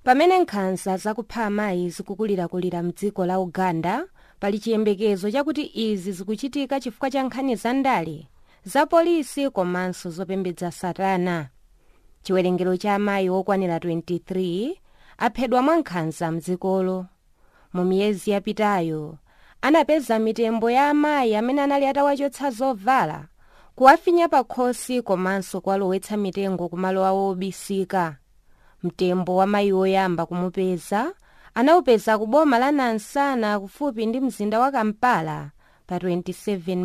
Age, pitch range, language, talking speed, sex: 20-39, 180-240 Hz, English, 110 wpm, female